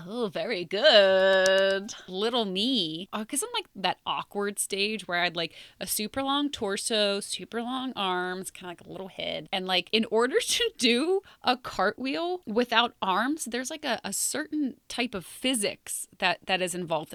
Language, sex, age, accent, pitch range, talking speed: English, female, 20-39, American, 175-220 Hz, 175 wpm